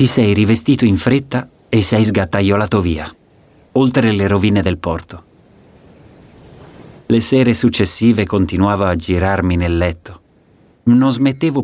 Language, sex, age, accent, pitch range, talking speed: Italian, male, 40-59, native, 90-120 Hz, 125 wpm